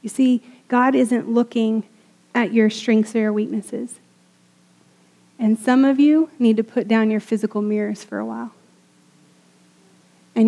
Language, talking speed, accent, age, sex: English, 150 wpm, American, 30-49, female